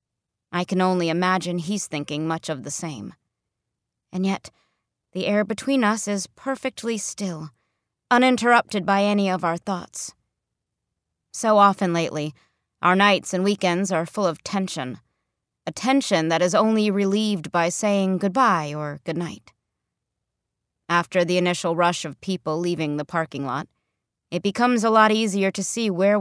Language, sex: English, female